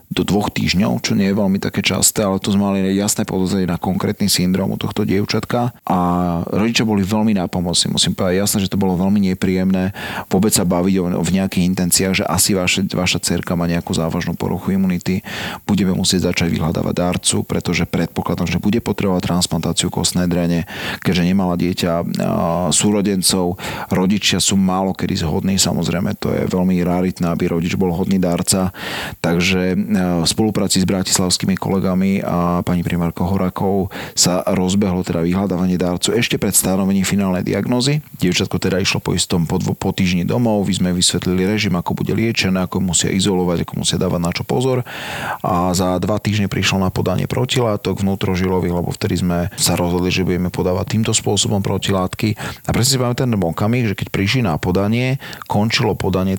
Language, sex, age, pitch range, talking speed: Slovak, male, 30-49, 90-105 Hz, 170 wpm